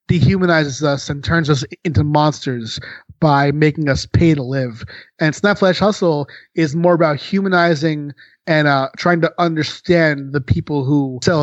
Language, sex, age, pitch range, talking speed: English, male, 30-49, 145-175 Hz, 150 wpm